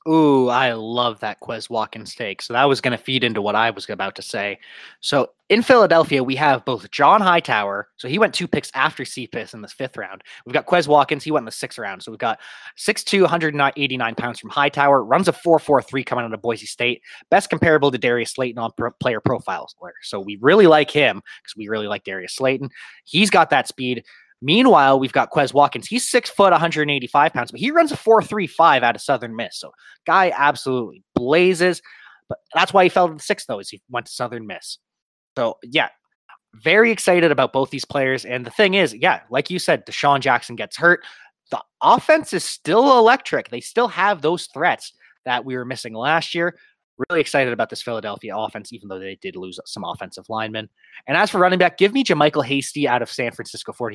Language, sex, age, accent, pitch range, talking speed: English, male, 20-39, American, 120-175 Hz, 210 wpm